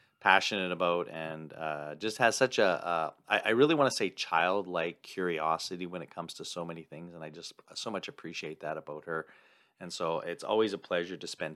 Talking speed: 200 wpm